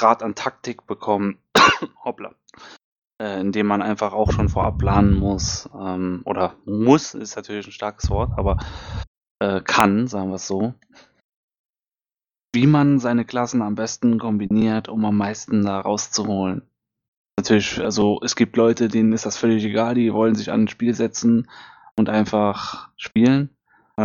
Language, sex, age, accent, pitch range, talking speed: German, male, 20-39, German, 100-115 Hz, 150 wpm